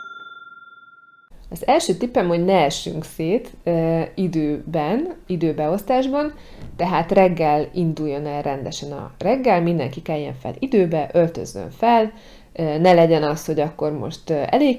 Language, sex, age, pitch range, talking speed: Hungarian, female, 30-49, 155-225 Hz, 120 wpm